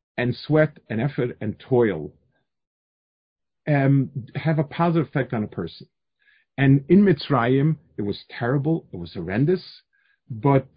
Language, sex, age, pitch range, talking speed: English, male, 50-69, 120-160 Hz, 135 wpm